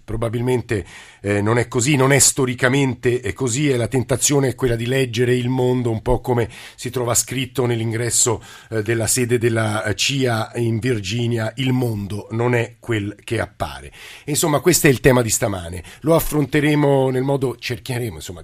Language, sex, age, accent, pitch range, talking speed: Italian, male, 50-69, native, 110-130 Hz, 170 wpm